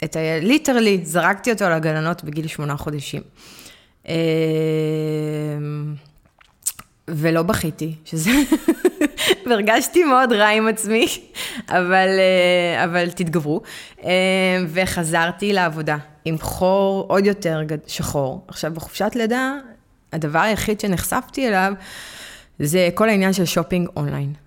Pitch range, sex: 155-215 Hz, female